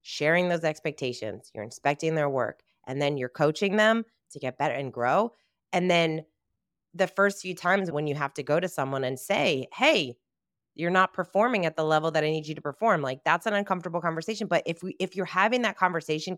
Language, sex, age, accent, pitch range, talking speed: English, female, 20-39, American, 155-220 Hz, 215 wpm